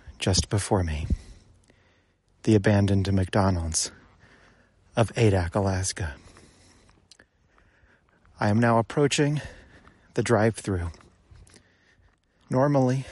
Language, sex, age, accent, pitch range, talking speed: English, male, 30-49, American, 90-115 Hz, 80 wpm